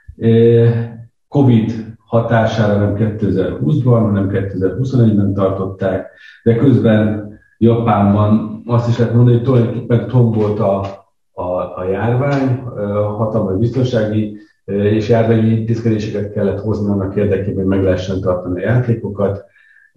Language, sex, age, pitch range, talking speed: Hungarian, male, 50-69, 100-120 Hz, 110 wpm